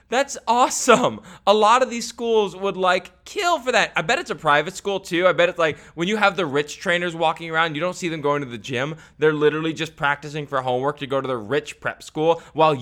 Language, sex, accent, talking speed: English, male, American, 250 wpm